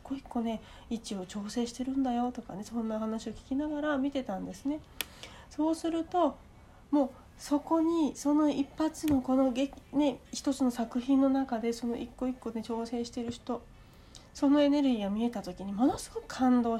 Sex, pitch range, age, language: female, 205-270 Hz, 40-59, Japanese